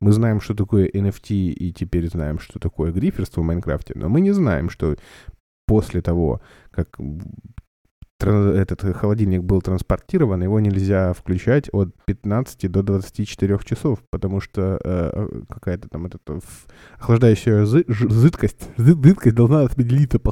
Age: 20-39